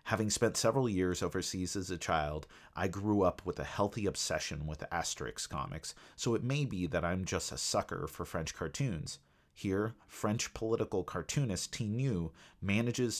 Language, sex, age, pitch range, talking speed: English, male, 30-49, 85-110 Hz, 165 wpm